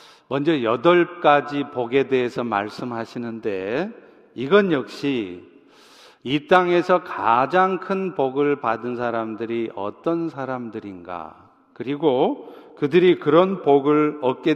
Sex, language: male, Korean